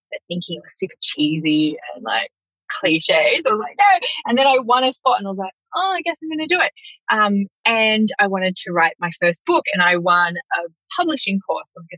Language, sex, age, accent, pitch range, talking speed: English, female, 20-39, Australian, 175-280 Hz, 235 wpm